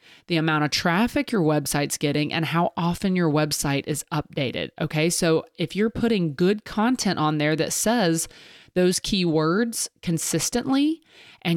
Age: 30-49